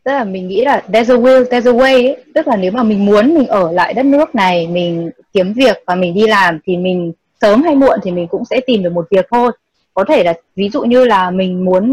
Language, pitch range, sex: Vietnamese, 185-250 Hz, female